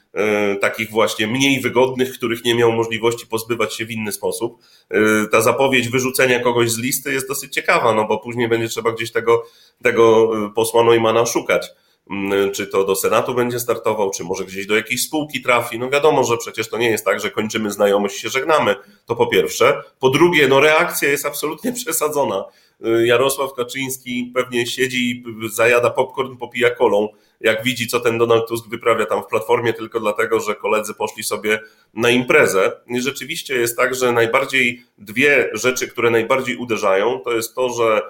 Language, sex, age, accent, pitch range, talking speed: Polish, male, 30-49, native, 115-135 Hz, 175 wpm